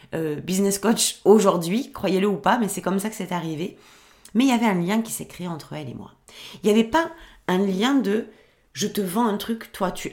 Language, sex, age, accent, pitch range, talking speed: French, female, 40-59, French, 170-230 Hz, 250 wpm